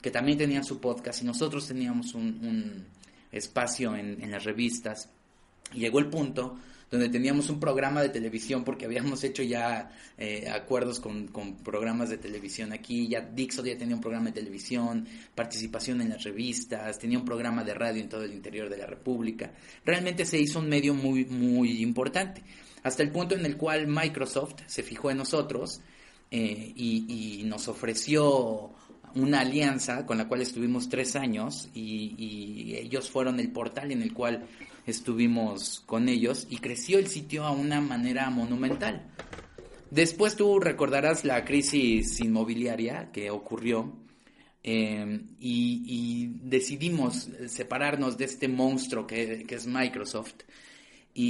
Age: 30-49